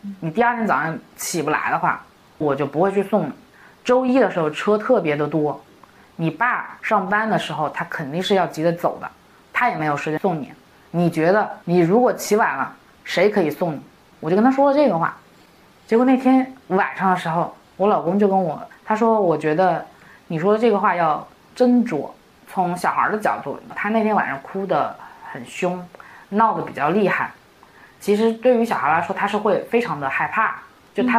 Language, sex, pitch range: Chinese, female, 175-240 Hz